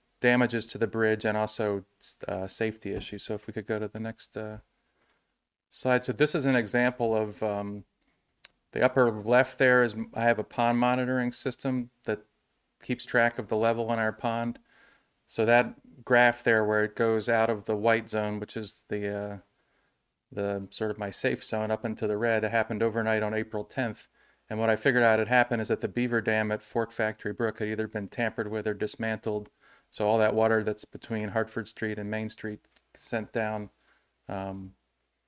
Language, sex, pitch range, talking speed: English, male, 105-120 Hz, 195 wpm